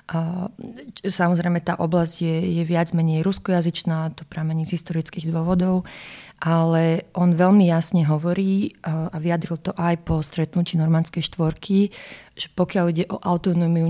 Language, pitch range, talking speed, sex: Slovak, 160-180 Hz, 135 wpm, female